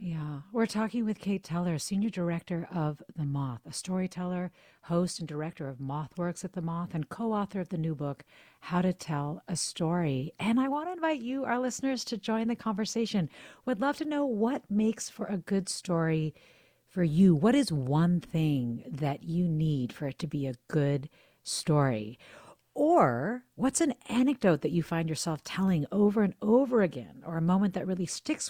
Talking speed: 190 wpm